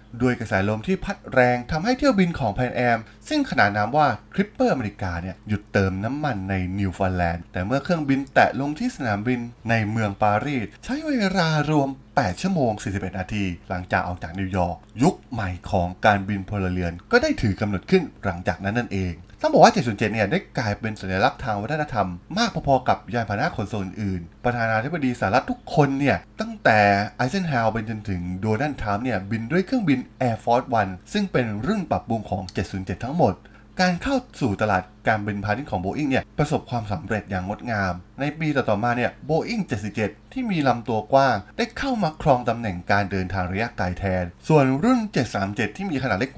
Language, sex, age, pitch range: Thai, male, 20-39, 100-140 Hz